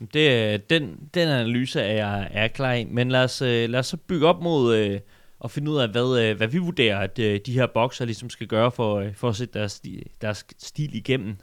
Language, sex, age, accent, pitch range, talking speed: Danish, male, 30-49, native, 110-130 Hz, 230 wpm